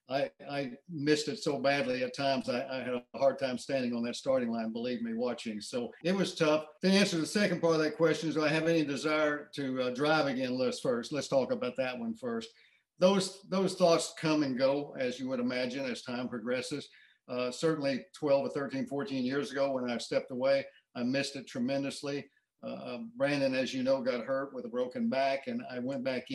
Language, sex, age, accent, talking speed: English, male, 50-69, American, 220 wpm